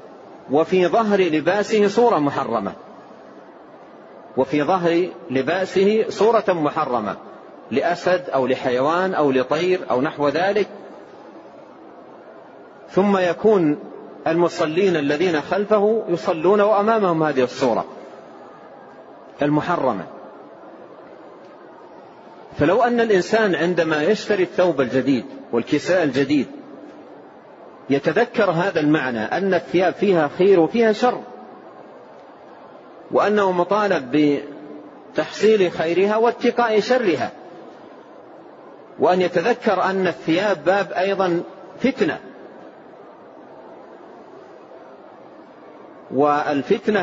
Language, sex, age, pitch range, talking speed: Arabic, male, 40-59, 150-200 Hz, 75 wpm